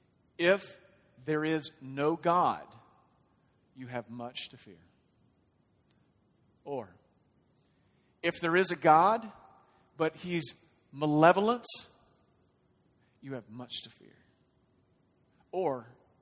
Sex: male